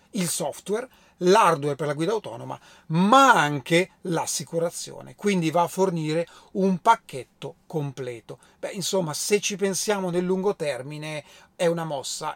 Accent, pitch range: native, 160-195 Hz